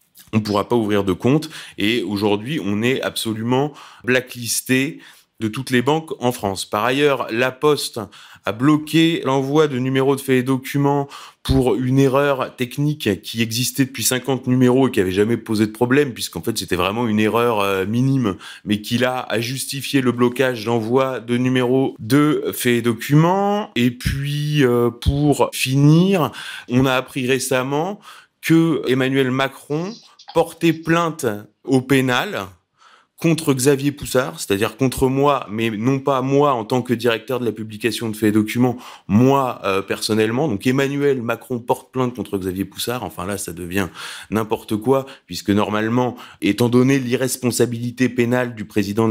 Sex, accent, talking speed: male, French, 160 wpm